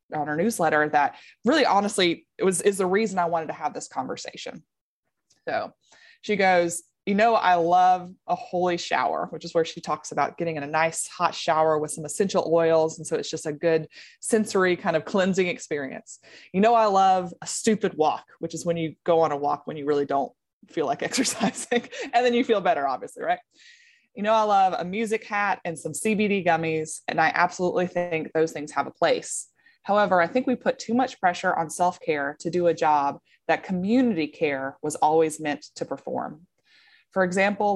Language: English